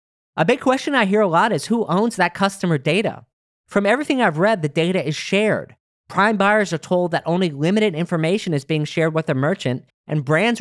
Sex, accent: male, American